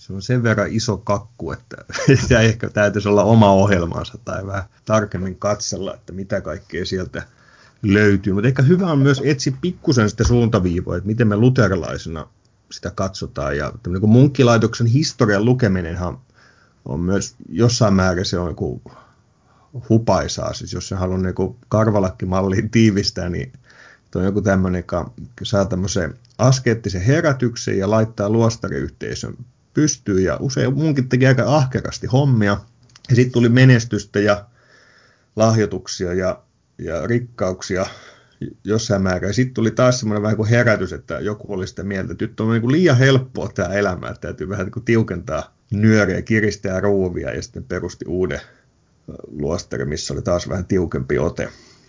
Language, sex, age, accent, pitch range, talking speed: Finnish, male, 30-49, native, 95-120 Hz, 145 wpm